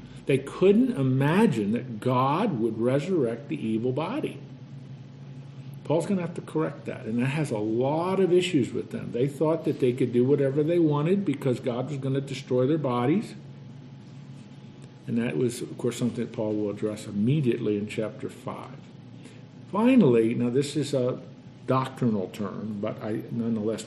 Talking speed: 170 wpm